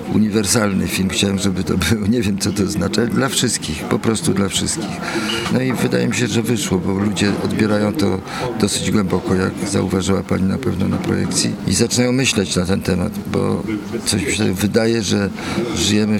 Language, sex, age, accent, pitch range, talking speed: Polish, male, 50-69, native, 95-110 Hz, 185 wpm